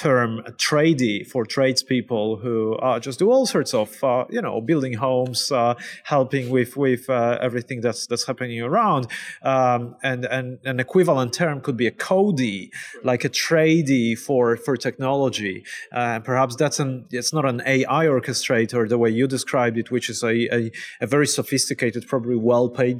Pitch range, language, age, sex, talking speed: 120-135 Hz, English, 30-49, male, 175 wpm